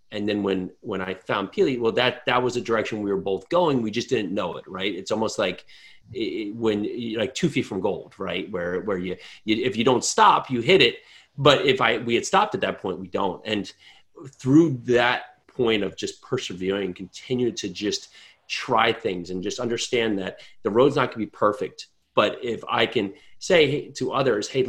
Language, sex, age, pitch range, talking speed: English, male, 30-49, 110-130 Hz, 215 wpm